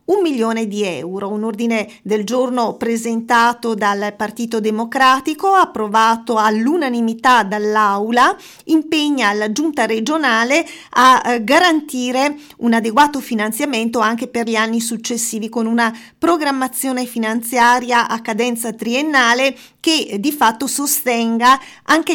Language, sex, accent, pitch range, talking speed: Italian, female, native, 225-275 Hz, 110 wpm